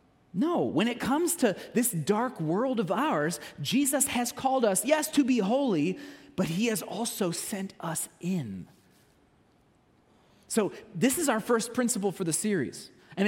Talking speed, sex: 160 wpm, male